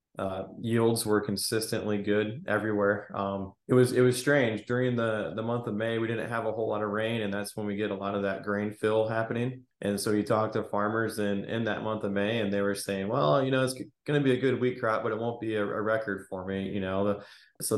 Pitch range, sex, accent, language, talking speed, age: 100-115 Hz, male, American, English, 265 wpm, 20-39